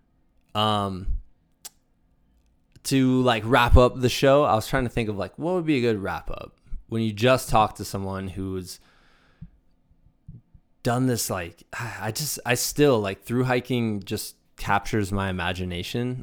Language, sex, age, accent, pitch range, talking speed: English, male, 20-39, American, 90-110 Hz, 155 wpm